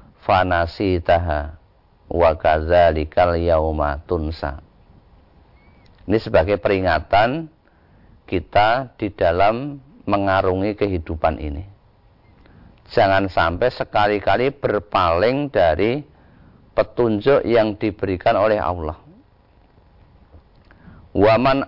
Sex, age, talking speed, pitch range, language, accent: male, 40-59, 65 wpm, 90-110 Hz, Indonesian, native